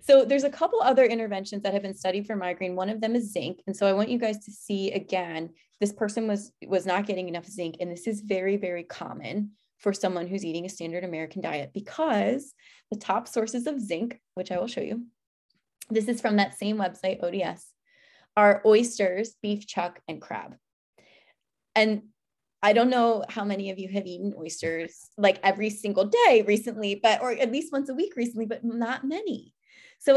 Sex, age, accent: female, 20-39, American